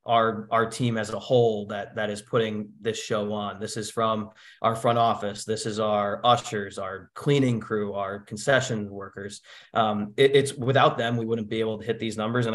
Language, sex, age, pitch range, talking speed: English, male, 20-39, 110-120 Hz, 205 wpm